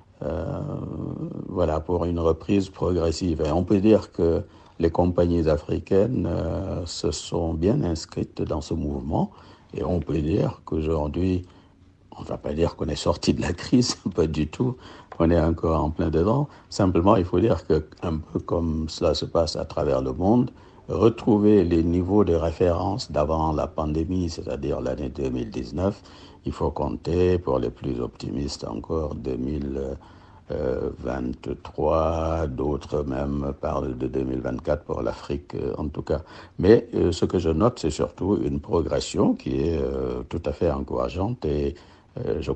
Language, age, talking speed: French, 60-79, 150 wpm